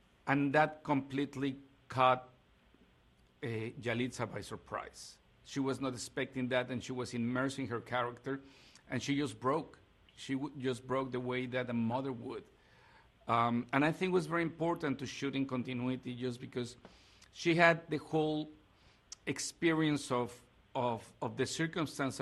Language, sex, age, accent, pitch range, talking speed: English, male, 50-69, Mexican, 120-140 Hz, 150 wpm